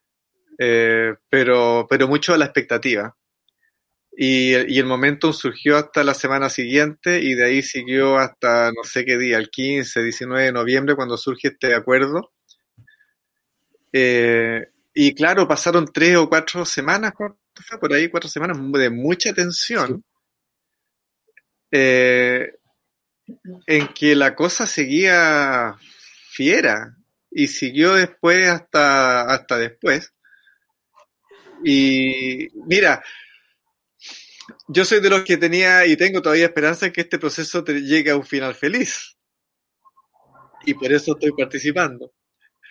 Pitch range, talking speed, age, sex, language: 135-190 Hz, 125 wpm, 30-49, male, Spanish